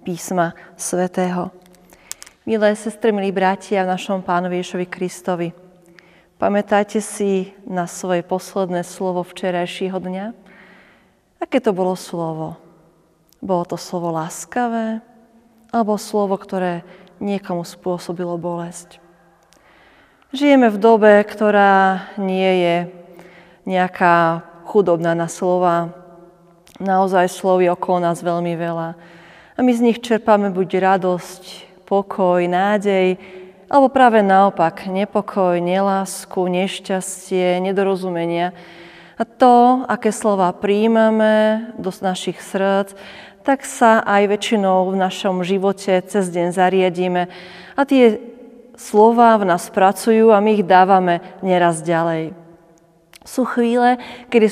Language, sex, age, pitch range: Slovak, female, 30-49, 180-210 Hz